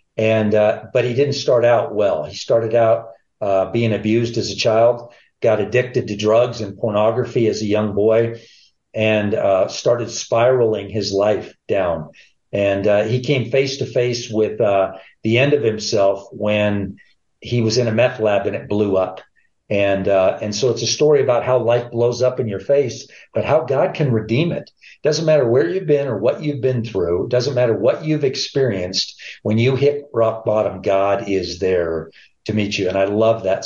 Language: English